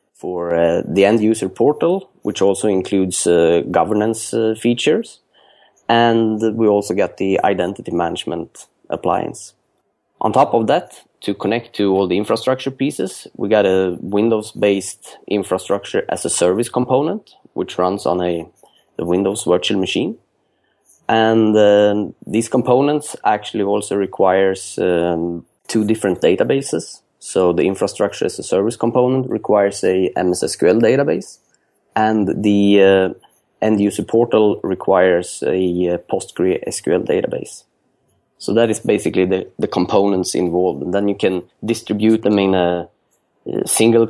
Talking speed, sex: 130 wpm, male